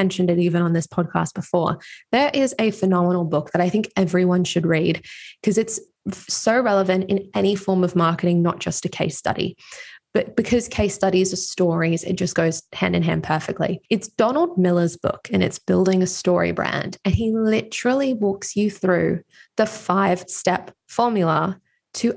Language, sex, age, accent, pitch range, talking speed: English, female, 20-39, Australian, 180-210 Hz, 180 wpm